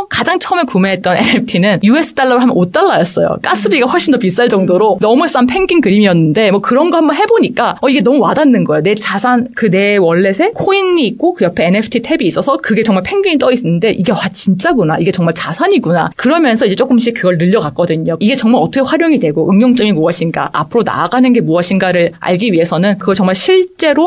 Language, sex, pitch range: Korean, female, 175-250 Hz